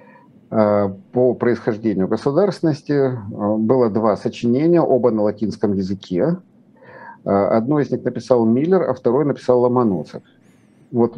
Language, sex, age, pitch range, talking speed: Russian, male, 50-69, 110-145 Hz, 105 wpm